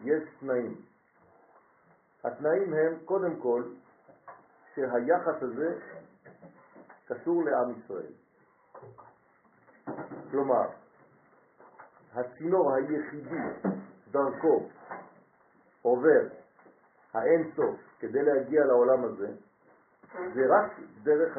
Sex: male